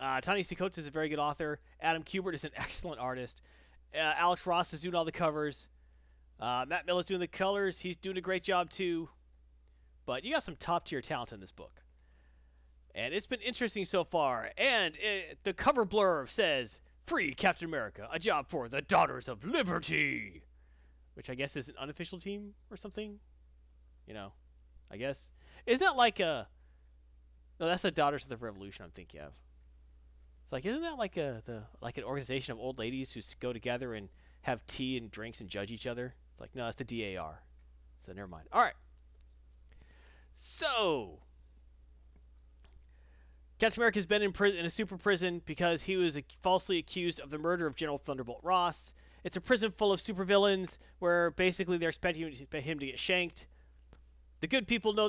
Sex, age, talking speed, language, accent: male, 30-49, 185 wpm, English, American